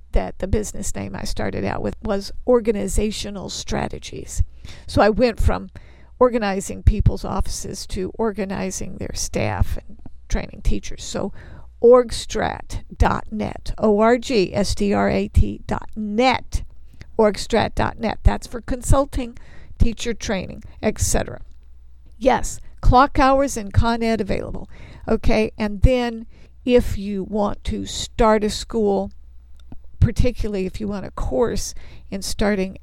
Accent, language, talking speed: American, English, 110 wpm